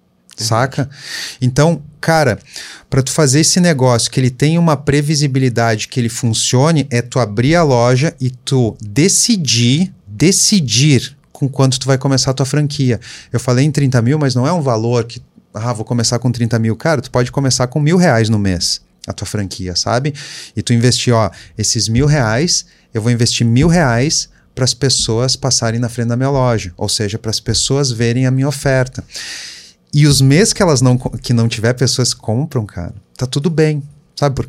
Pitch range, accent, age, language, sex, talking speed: 115-150 Hz, Brazilian, 30-49, Portuguese, male, 190 wpm